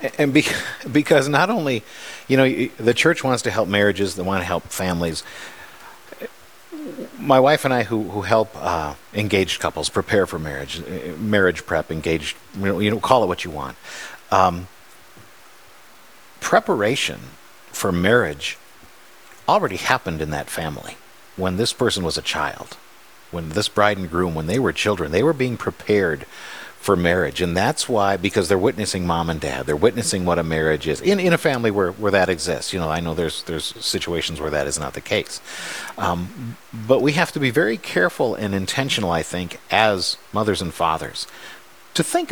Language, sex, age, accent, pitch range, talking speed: English, male, 50-69, American, 90-140 Hz, 180 wpm